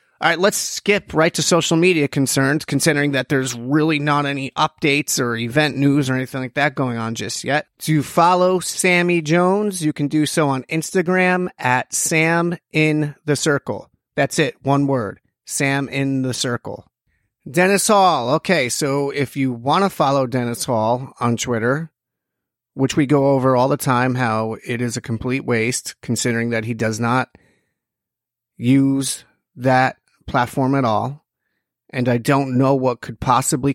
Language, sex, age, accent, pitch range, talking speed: English, male, 30-49, American, 125-155 Hz, 165 wpm